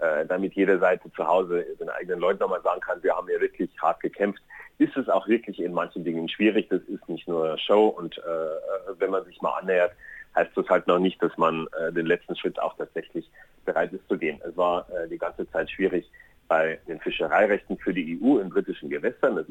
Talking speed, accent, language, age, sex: 220 wpm, German, German, 40-59, male